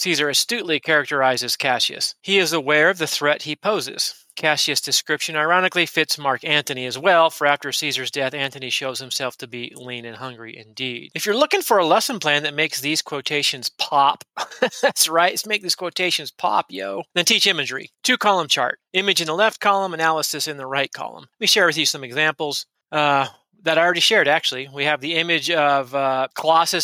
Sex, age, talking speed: male, 30-49, 195 wpm